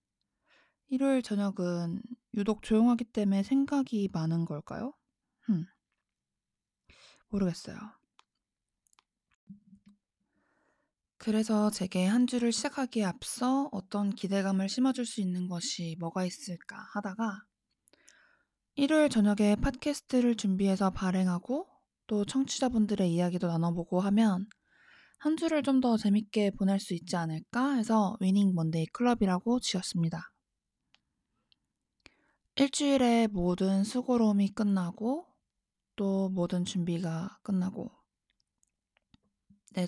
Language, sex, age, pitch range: Korean, female, 20-39, 185-240 Hz